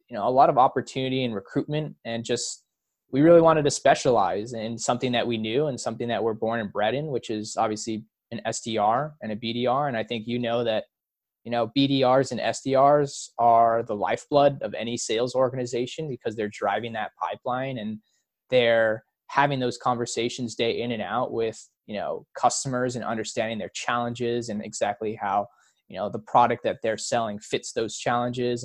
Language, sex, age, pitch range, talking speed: English, male, 20-39, 115-135 Hz, 185 wpm